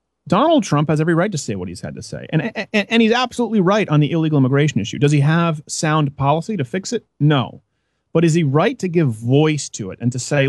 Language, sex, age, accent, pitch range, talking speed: English, male, 30-49, American, 130-205 Hz, 250 wpm